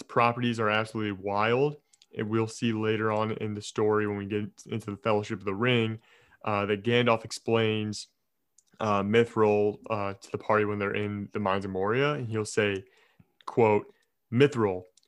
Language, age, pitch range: English, 20-39, 105-115 Hz